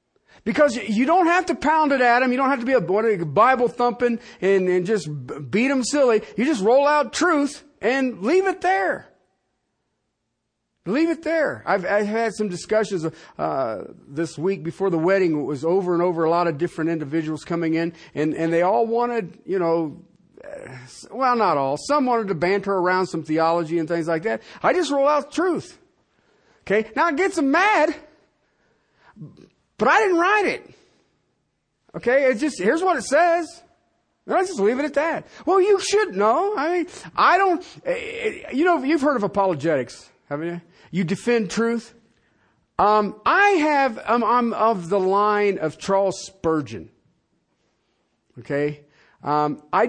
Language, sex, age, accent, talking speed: English, male, 50-69, American, 170 wpm